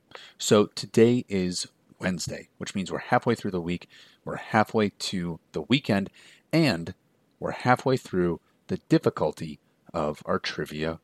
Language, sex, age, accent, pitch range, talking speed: English, male, 30-49, American, 90-115 Hz, 135 wpm